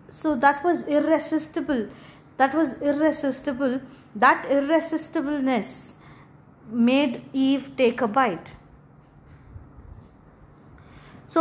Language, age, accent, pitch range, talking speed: English, 20-39, Indian, 230-290 Hz, 80 wpm